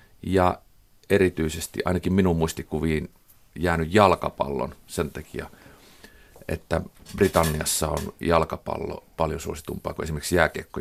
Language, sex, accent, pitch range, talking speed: Finnish, male, native, 90-110 Hz, 100 wpm